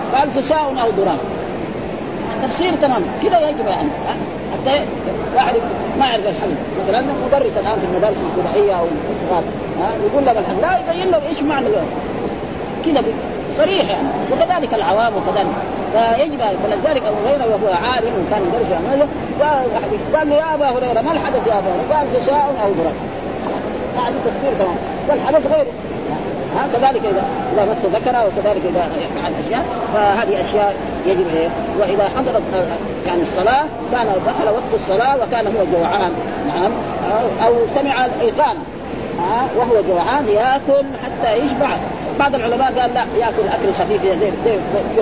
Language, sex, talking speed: Arabic, female, 150 wpm